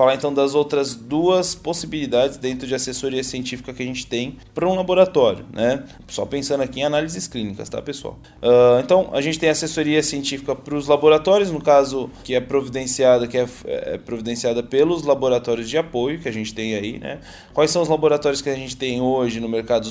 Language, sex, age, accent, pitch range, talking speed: Portuguese, male, 20-39, Brazilian, 115-150 Hz, 200 wpm